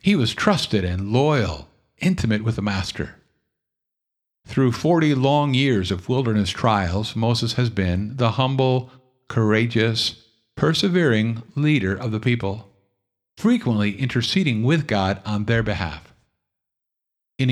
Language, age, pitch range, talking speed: English, 50-69, 100-135 Hz, 120 wpm